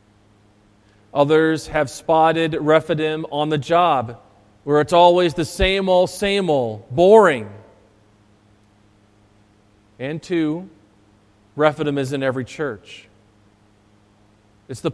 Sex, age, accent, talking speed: male, 40-59, American, 100 wpm